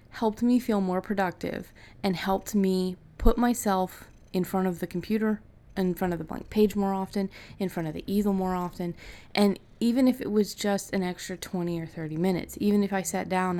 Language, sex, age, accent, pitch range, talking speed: English, female, 20-39, American, 165-195 Hz, 205 wpm